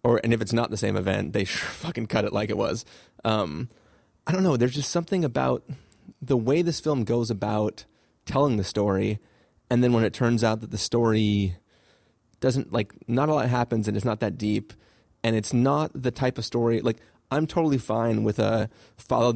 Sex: male